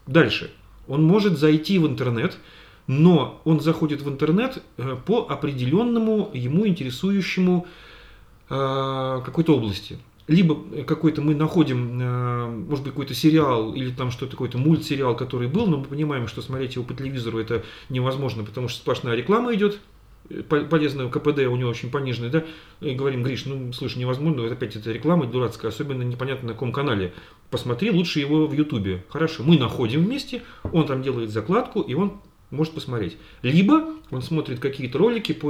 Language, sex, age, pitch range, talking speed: Russian, male, 40-59, 125-160 Hz, 155 wpm